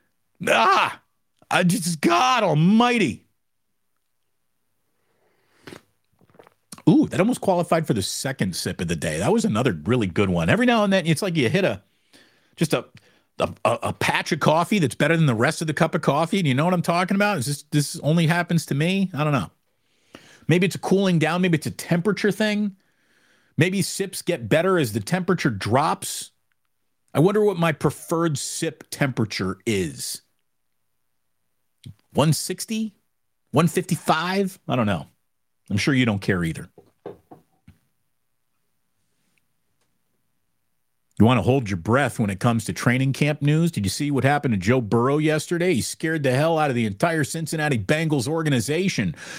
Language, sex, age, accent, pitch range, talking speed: English, male, 50-69, American, 130-180 Hz, 165 wpm